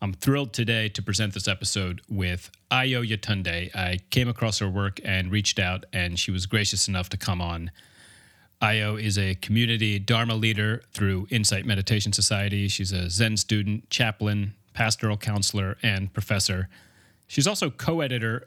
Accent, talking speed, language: American, 155 wpm, English